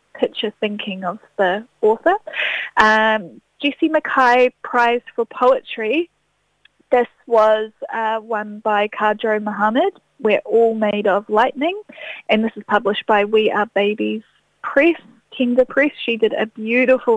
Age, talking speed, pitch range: 10-29, 135 wpm, 205-255 Hz